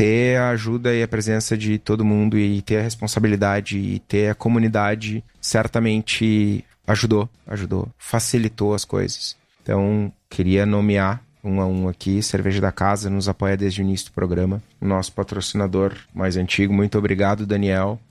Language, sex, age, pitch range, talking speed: Portuguese, male, 30-49, 95-110 Hz, 160 wpm